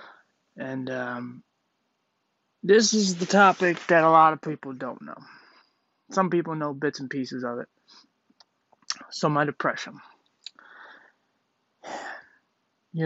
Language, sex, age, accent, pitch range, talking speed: English, male, 20-39, American, 145-170 Hz, 115 wpm